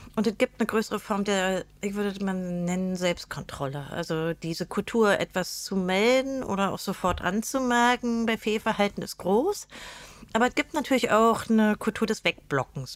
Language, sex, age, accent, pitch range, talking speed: German, female, 40-59, German, 175-220 Hz, 160 wpm